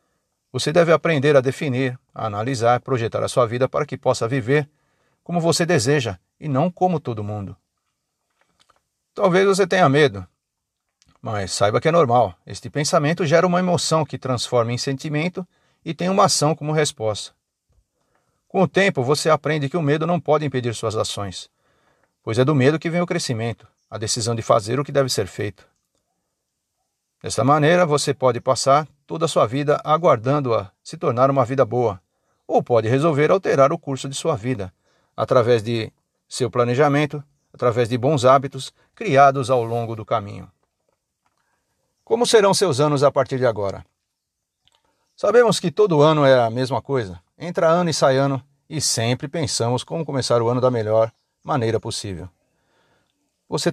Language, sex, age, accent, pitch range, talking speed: Portuguese, male, 50-69, Brazilian, 120-155 Hz, 165 wpm